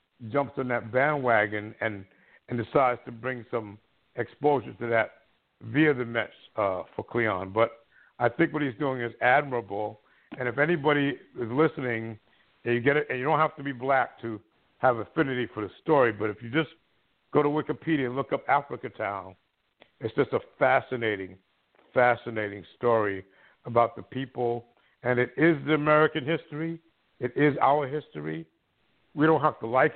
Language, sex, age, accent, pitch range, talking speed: English, male, 60-79, American, 115-145 Hz, 170 wpm